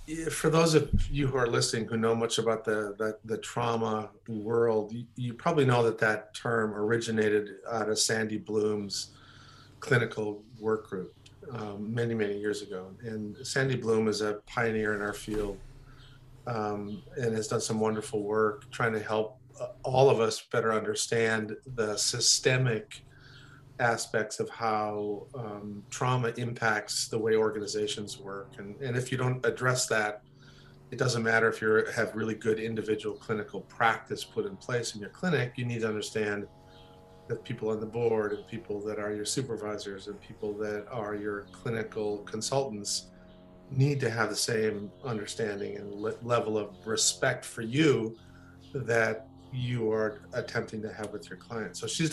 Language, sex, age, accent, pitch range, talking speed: English, male, 40-59, American, 105-120 Hz, 160 wpm